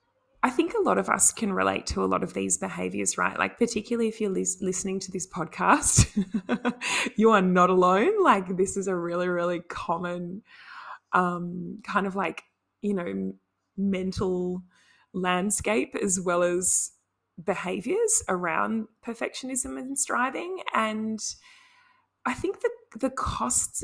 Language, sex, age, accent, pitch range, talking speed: English, female, 20-39, Australian, 175-235 Hz, 140 wpm